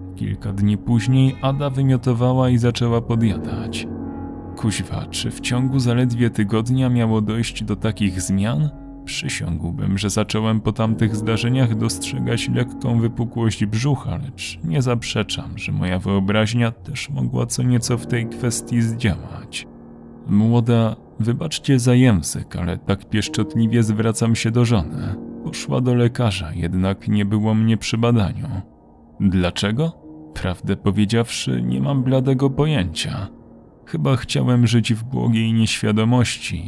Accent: native